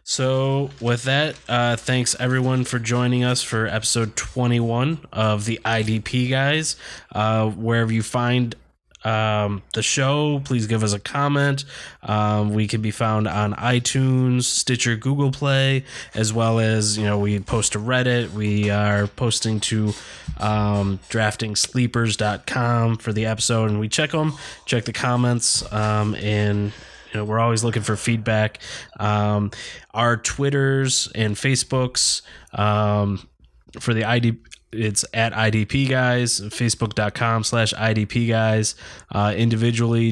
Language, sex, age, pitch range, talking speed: English, male, 20-39, 105-125 Hz, 135 wpm